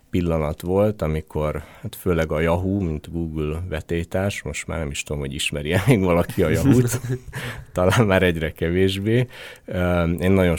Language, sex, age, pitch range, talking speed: Hungarian, male, 30-49, 80-95 Hz, 155 wpm